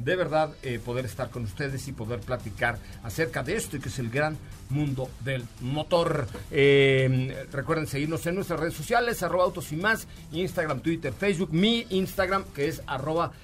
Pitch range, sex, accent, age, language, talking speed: 130-175 Hz, male, Mexican, 50-69, Spanish, 180 wpm